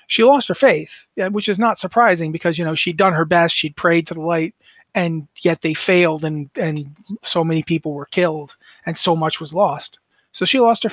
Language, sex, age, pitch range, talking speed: English, male, 30-49, 160-190 Hz, 220 wpm